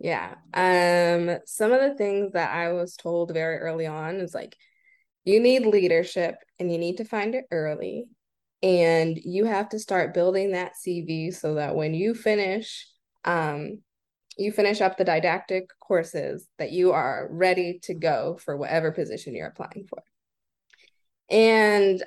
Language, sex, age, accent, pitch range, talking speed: English, female, 20-39, American, 170-210 Hz, 160 wpm